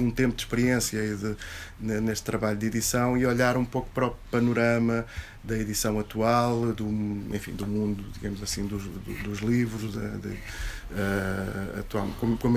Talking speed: 170 wpm